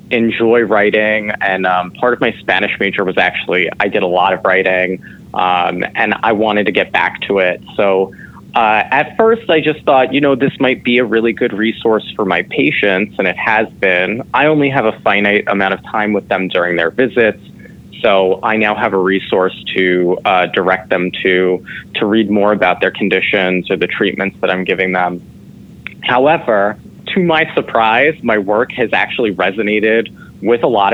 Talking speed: 190 wpm